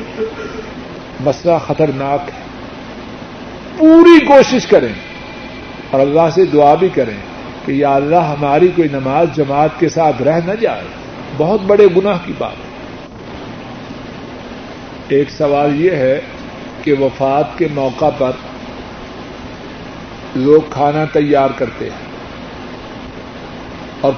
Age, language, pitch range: 50-69, Urdu, 145-185 Hz